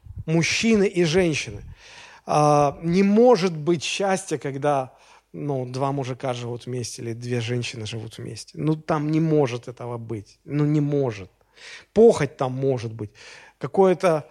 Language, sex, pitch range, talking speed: Russian, male, 125-180 Hz, 135 wpm